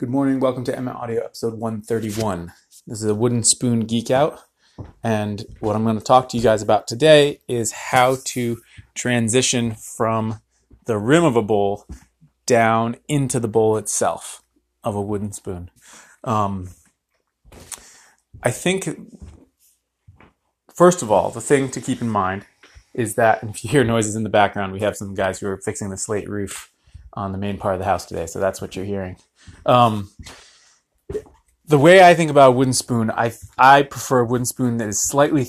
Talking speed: 185 wpm